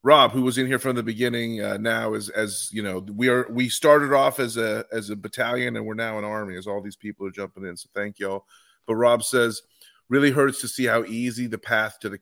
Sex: male